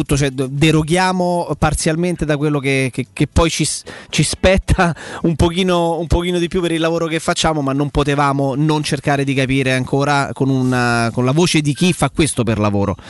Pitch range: 135-175 Hz